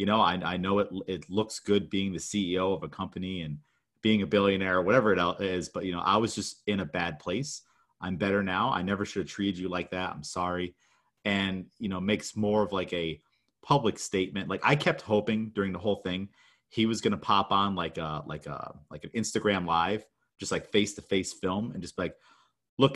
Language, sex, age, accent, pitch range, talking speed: English, male, 30-49, American, 90-105 Hz, 225 wpm